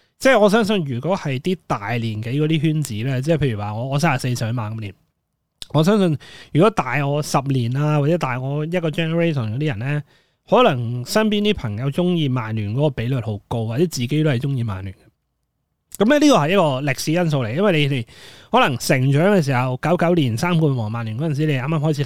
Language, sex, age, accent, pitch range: Chinese, male, 20-39, native, 125-170 Hz